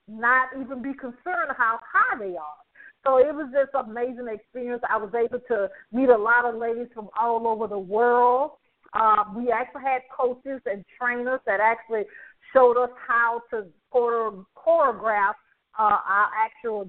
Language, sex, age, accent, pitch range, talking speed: English, female, 50-69, American, 215-265 Hz, 165 wpm